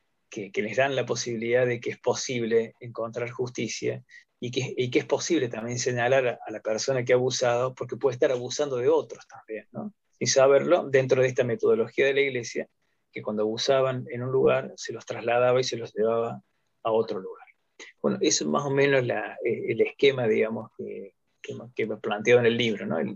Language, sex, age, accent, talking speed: Spanish, male, 20-39, Argentinian, 205 wpm